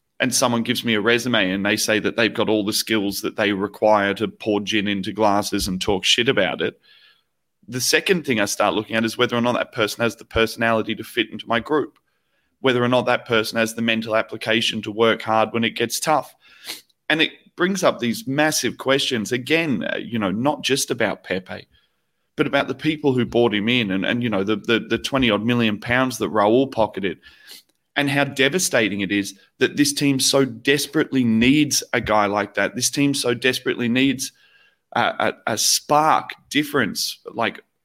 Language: English